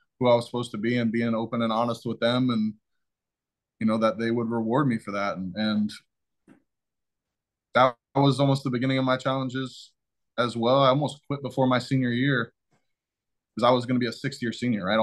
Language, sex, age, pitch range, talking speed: English, male, 20-39, 110-120 Hz, 210 wpm